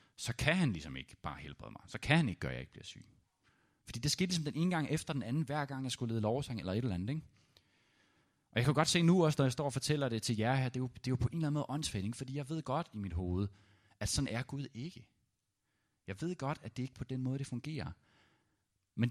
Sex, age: male, 30-49